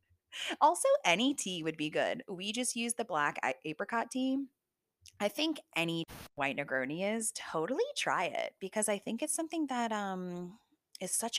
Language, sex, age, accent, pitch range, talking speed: English, female, 20-39, American, 155-205 Hz, 165 wpm